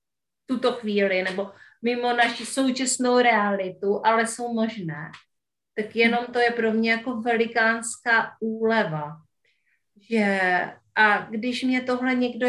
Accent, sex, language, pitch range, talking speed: native, female, Czech, 200-230 Hz, 120 wpm